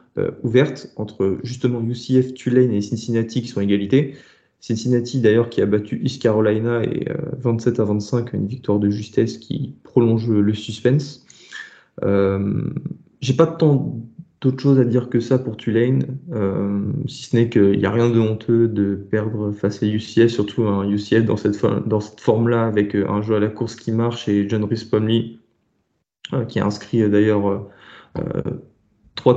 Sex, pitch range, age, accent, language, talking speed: male, 105-125 Hz, 20-39, French, French, 180 wpm